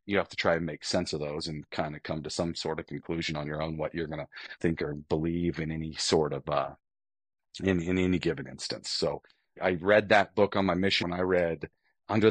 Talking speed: 240 wpm